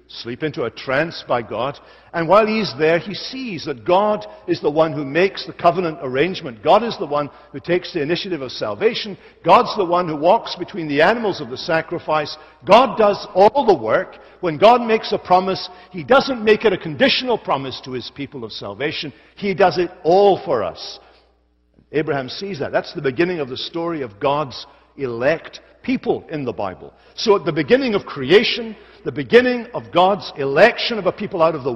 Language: English